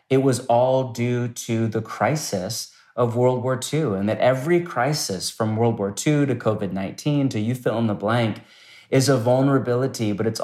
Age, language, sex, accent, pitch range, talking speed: 30-49, English, male, American, 105-130 Hz, 185 wpm